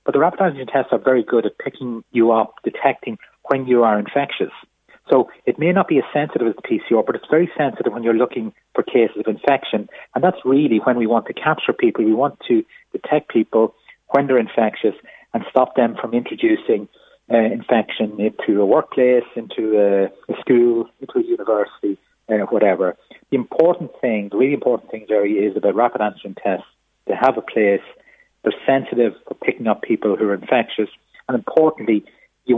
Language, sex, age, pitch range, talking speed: English, male, 40-59, 110-140 Hz, 190 wpm